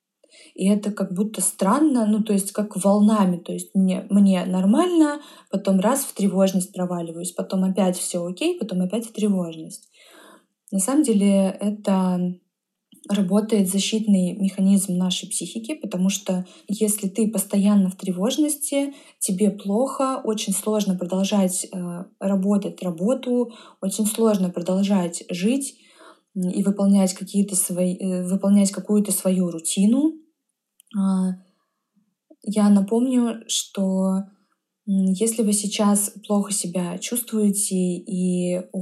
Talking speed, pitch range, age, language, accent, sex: 115 wpm, 185-215 Hz, 20-39, Russian, native, female